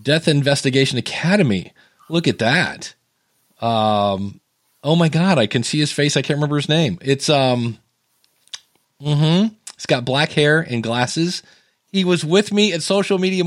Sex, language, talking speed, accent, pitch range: male, English, 160 wpm, American, 140-185 Hz